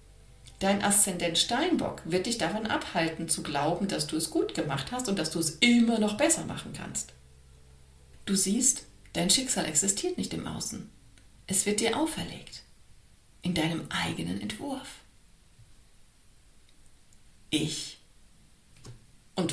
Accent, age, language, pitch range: German, 50-69, German, 150-220 Hz